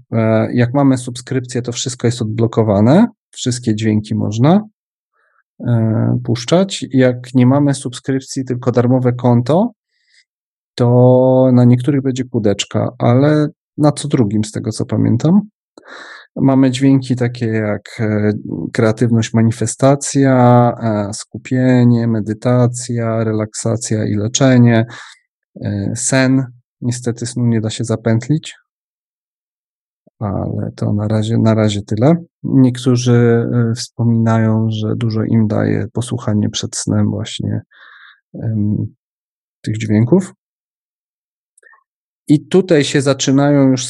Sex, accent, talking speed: male, native, 100 wpm